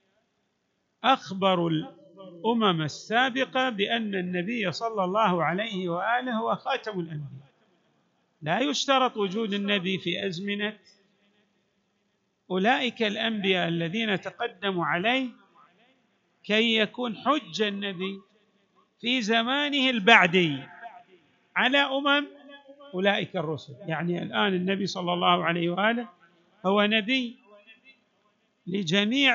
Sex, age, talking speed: male, 50-69, 90 wpm